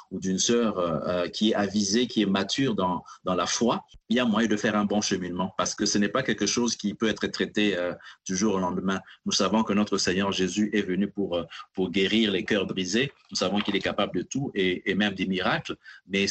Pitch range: 95-110 Hz